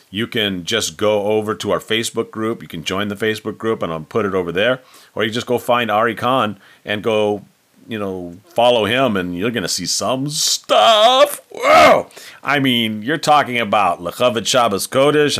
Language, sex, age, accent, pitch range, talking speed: English, male, 40-59, American, 90-125 Hz, 195 wpm